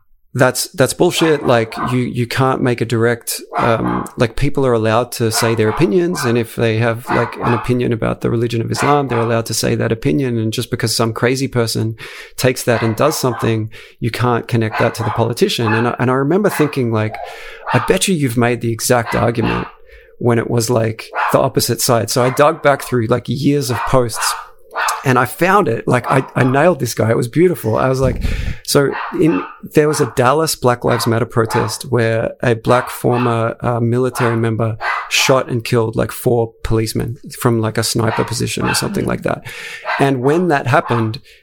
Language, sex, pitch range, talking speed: English, male, 115-140 Hz, 200 wpm